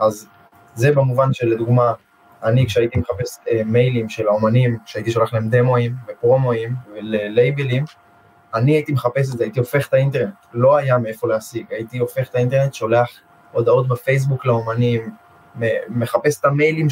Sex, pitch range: male, 115-140 Hz